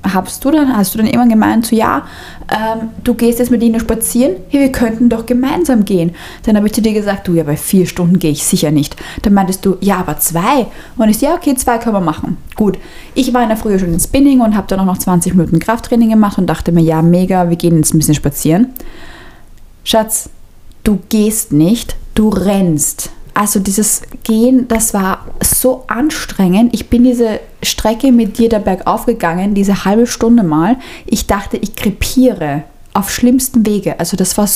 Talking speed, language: 200 wpm, German